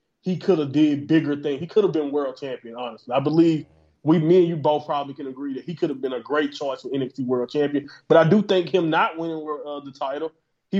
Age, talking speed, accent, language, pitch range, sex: 20-39, 255 wpm, American, English, 140-175 Hz, male